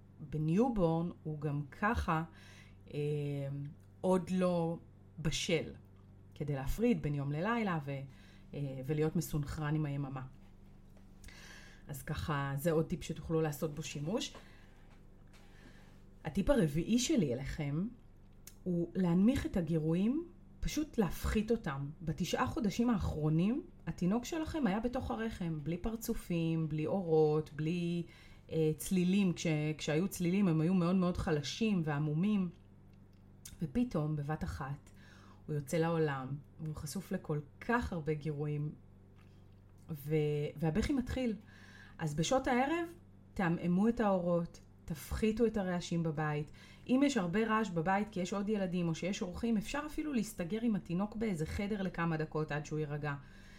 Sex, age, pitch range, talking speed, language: female, 30-49, 135-190 Hz, 125 wpm, Hebrew